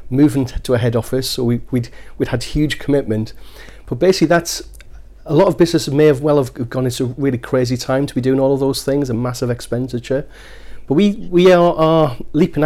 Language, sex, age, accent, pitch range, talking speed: English, male, 40-59, British, 115-140 Hz, 215 wpm